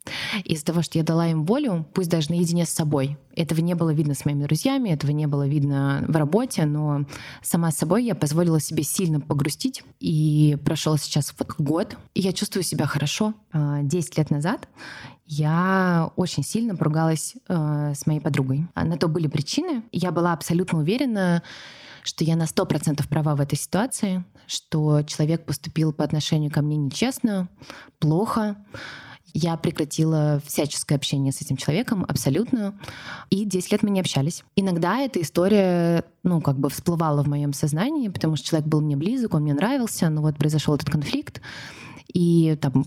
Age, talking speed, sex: 20-39, 165 wpm, female